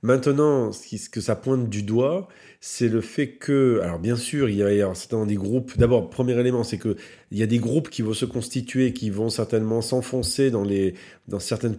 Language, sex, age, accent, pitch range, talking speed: French, male, 40-59, French, 105-130 Hz, 220 wpm